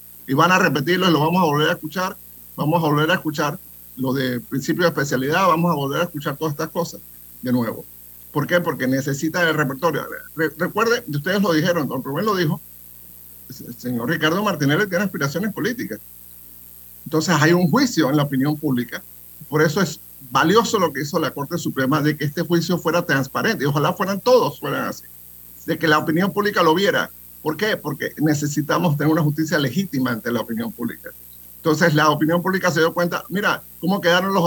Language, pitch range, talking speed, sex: Spanish, 125-175 Hz, 195 wpm, male